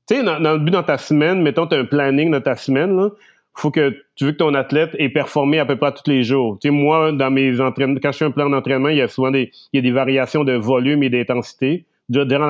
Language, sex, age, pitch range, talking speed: French, male, 30-49, 125-150 Hz, 285 wpm